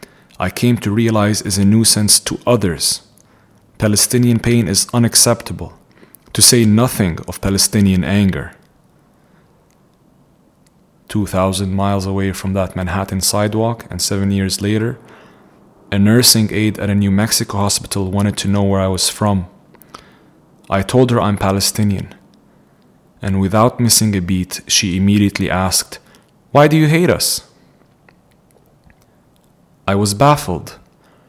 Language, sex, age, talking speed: English, male, 30-49, 130 wpm